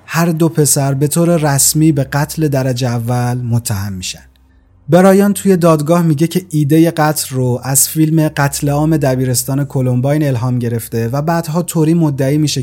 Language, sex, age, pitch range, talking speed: Persian, male, 30-49, 120-155 Hz, 155 wpm